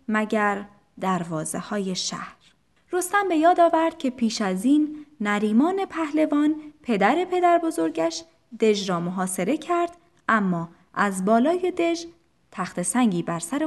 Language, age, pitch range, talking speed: Persian, 20-39, 195-315 Hz, 125 wpm